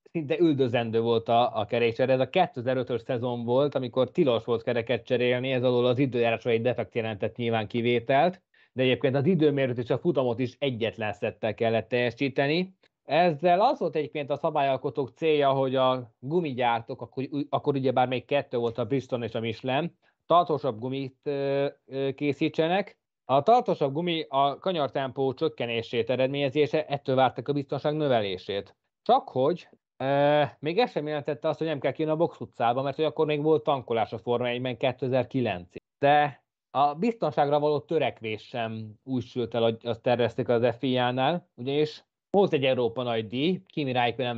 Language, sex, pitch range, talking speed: Hungarian, male, 120-150 Hz, 160 wpm